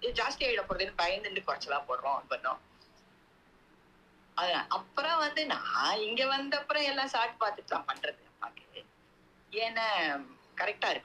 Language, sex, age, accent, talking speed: English, female, 20-39, Indian, 115 wpm